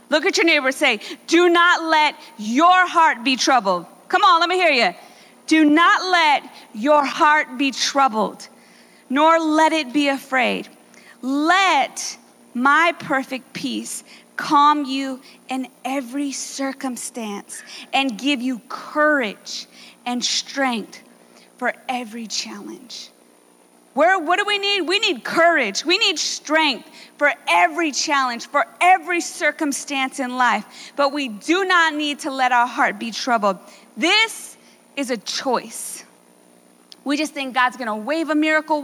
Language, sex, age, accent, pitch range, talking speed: English, female, 40-59, American, 250-325 Hz, 140 wpm